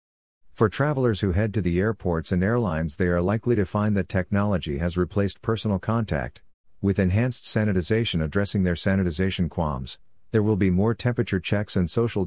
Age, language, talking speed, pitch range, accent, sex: 50-69, English, 170 wpm, 85-105 Hz, American, male